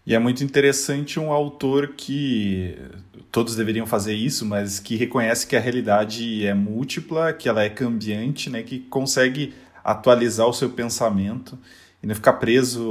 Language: Portuguese